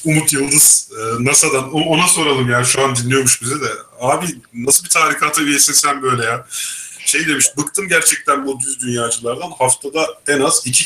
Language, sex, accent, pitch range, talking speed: Turkish, male, native, 120-140 Hz, 160 wpm